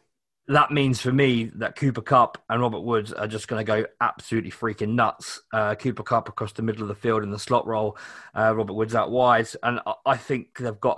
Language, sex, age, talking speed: English, male, 20-39, 225 wpm